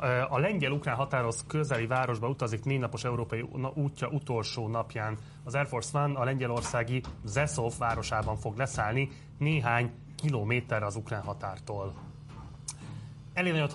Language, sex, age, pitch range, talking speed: Hungarian, male, 30-49, 115-140 Hz, 120 wpm